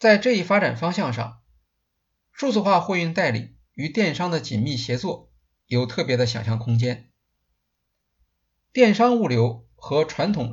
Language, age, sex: Chinese, 50-69, male